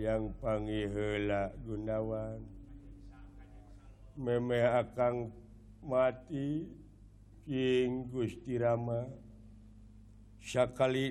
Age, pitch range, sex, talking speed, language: 60-79, 105-150 Hz, male, 60 wpm, Indonesian